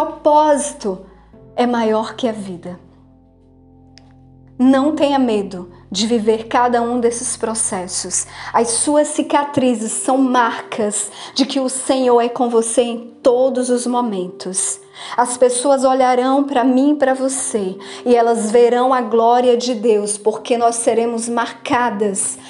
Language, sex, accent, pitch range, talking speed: Portuguese, female, Brazilian, 225-270 Hz, 135 wpm